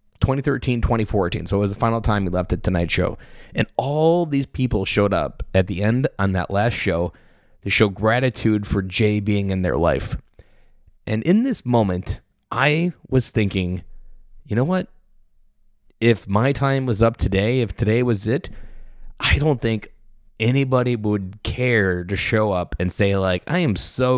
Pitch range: 100-135 Hz